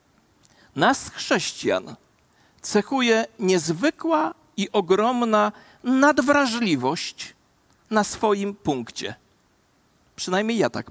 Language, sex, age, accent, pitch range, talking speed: Polish, male, 50-69, native, 205-265 Hz, 70 wpm